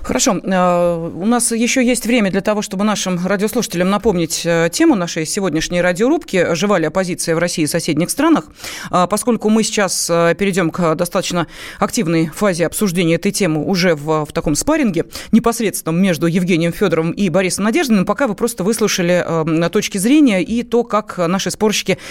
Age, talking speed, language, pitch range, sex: 30-49, 155 wpm, Russian, 170-230 Hz, female